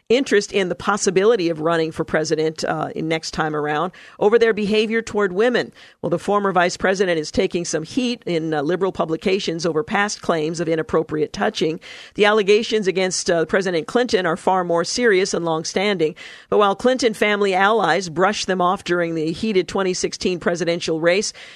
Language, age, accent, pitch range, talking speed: English, 50-69, American, 170-210 Hz, 175 wpm